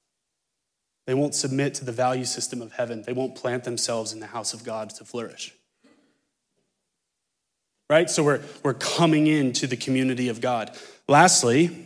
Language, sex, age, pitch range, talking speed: English, male, 30-49, 120-145 Hz, 155 wpm